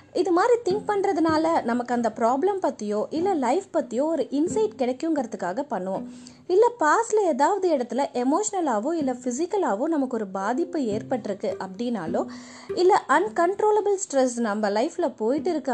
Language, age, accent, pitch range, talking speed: Tamil, 20-39, native, 245-355 Hz, 130 wpm